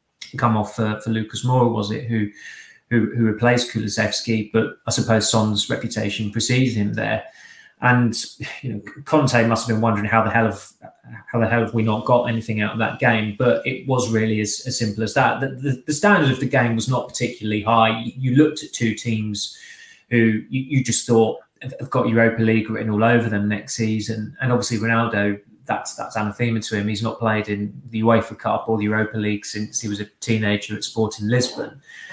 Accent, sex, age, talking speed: British, male, 20-39, 210 wpm